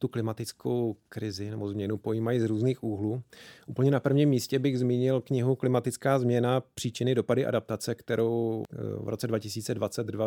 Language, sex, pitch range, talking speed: Czech, male, 110-125 Hz, 145 wpm